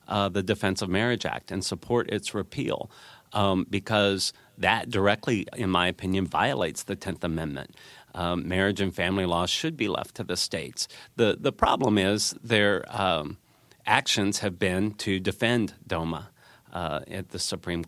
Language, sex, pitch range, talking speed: English, male, 90-105 Hz, 160 wpm